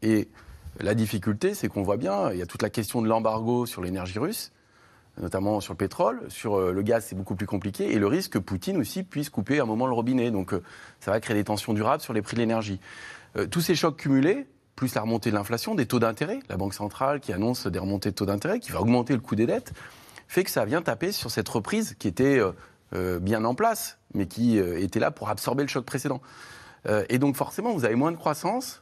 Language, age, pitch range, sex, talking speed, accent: French, 30-49, 100-130 Hz, male, 235 wpm, French